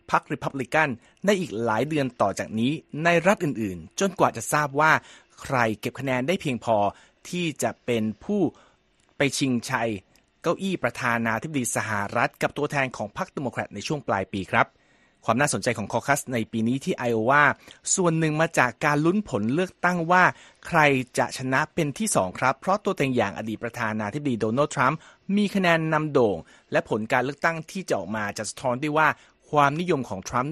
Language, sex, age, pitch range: Thai, male, 30-49, 115-155 Hz